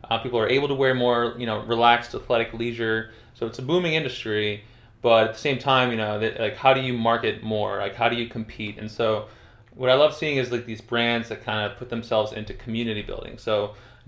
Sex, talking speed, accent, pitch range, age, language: male, 235 wpm, American, 105-120 Hz, 20-39, English